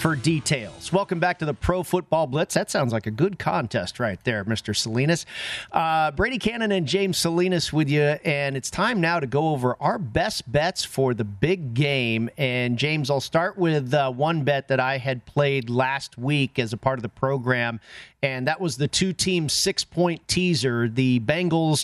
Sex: male